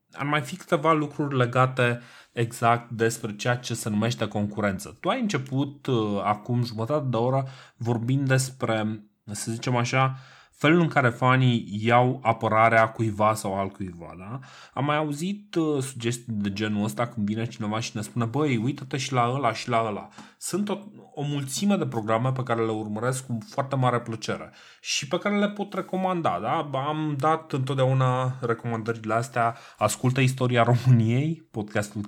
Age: 20-39